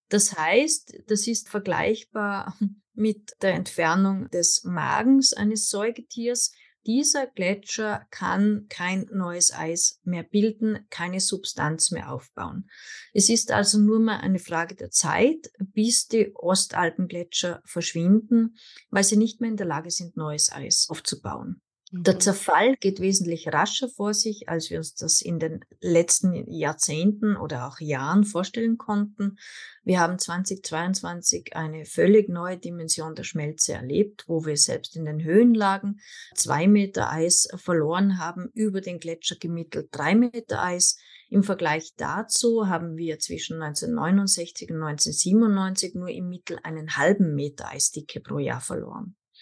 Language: German